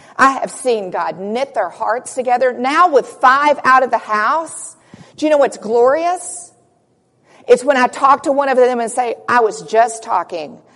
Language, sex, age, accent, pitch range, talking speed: English, female, 50-69, American, 205-275 Hz, 190 wpm